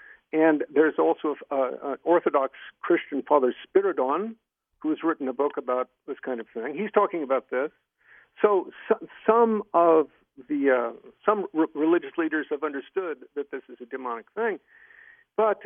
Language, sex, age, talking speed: English, male, 50-69, 155 wpm